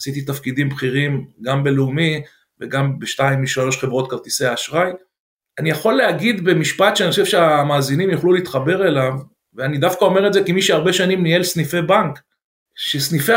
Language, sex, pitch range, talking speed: Hebrew, male, 140-185 Hz, 150 wpm